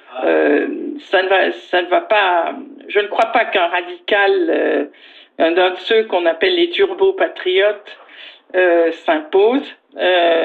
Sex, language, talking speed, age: female, French, 150 wpm, 50-69